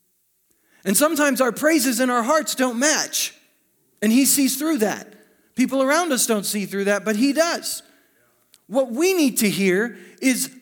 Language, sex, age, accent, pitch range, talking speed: English, male, 40-59, American, 190-265 Hz, 170 wpm